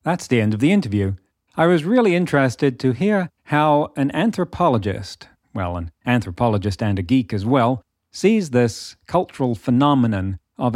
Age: 40-59